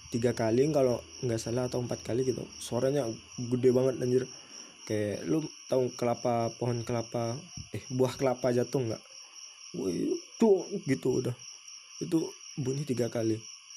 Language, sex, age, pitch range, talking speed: Indonesian, male, 20-39, 115-150 Hz, 140 wpm